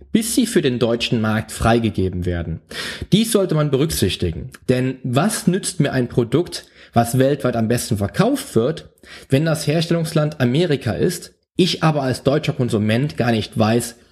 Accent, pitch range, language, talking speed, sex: German, 110-155 Hz, German, 155 wpm, male